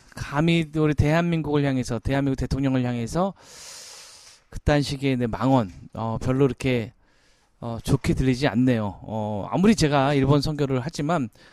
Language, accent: Korean, native